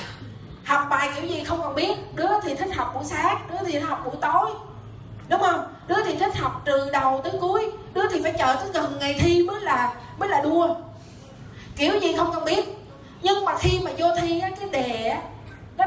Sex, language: female, Vietnamese